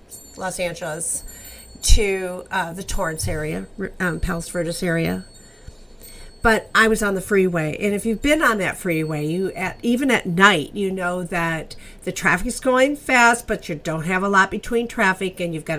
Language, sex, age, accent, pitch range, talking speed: English, female, 50-69, American, 165-205 Hz, 180 wpm